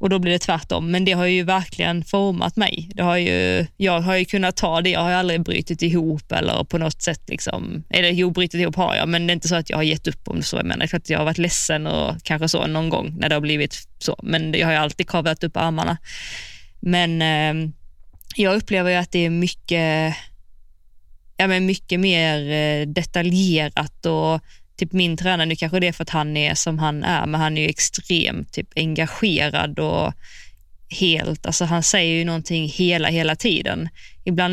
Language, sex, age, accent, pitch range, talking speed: Swedish, female, 20-39, native, 155-180 Hz, 220 wpm